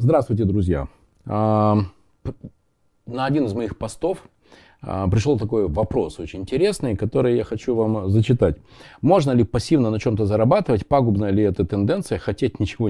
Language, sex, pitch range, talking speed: Russian, male, 95-145 Hz, 135 wpm